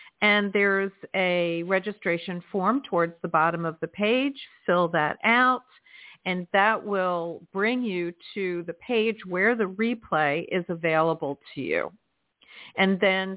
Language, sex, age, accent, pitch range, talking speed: English, female, 50-69, American, 170-215 Hz, 140 wpm